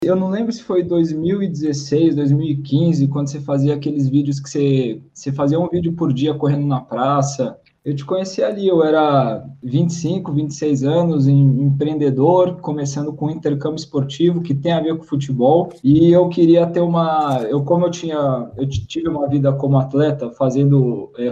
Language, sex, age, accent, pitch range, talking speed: Portuguese, male, 20-39, Brazilian, 140-170 Hz, 170 wpm